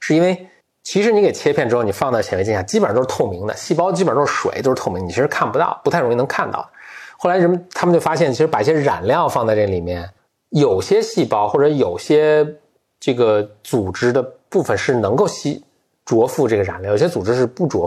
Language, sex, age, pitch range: Chinese, male, 20-39, 130-215 Hz